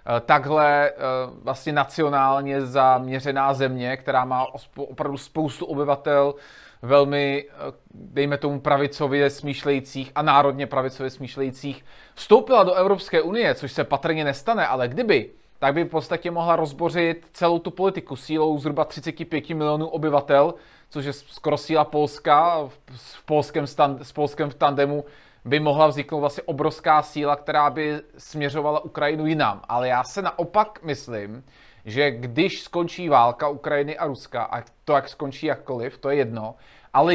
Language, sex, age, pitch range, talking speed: Czech, male, 20-39, 140-160 Hz, 135 wpm